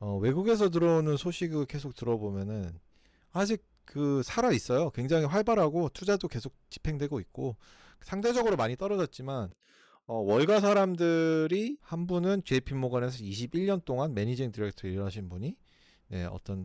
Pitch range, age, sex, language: 110-160 Hz, 40-59, male, Korean